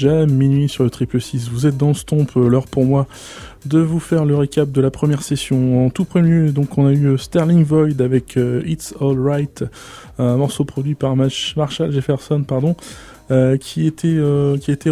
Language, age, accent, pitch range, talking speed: English, 20-39, French, 130-160 Hz, 210 wpm